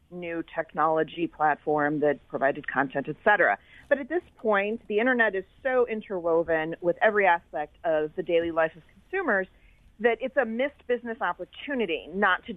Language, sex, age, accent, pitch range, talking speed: English, female, 40-59, American, 155-200 Hz, 160 wpm